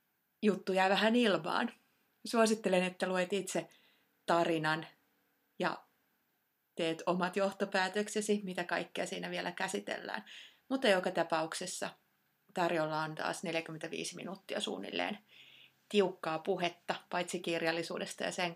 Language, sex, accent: Finnish, female, native